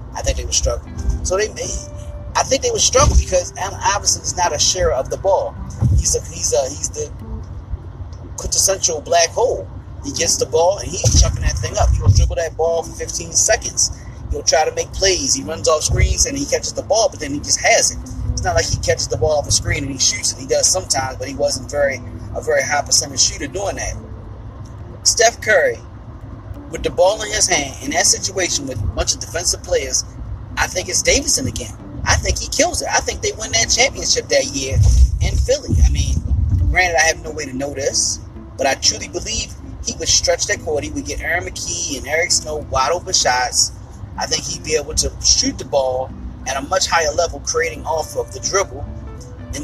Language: English